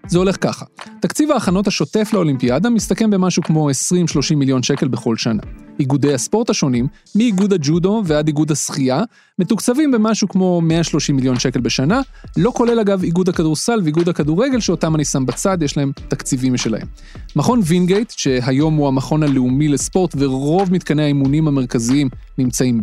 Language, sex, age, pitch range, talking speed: Hebrew, male, 30-49, 140-195 Hz, 150 wpm